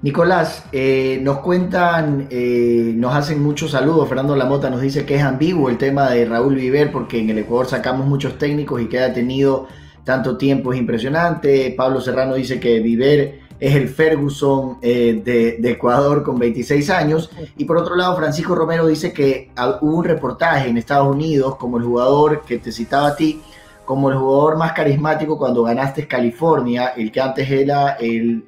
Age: 30-49